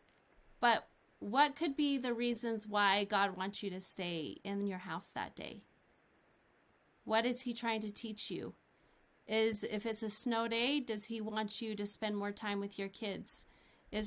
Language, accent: English, American